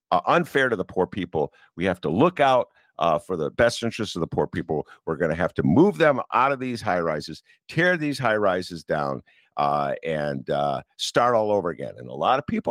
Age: 50-69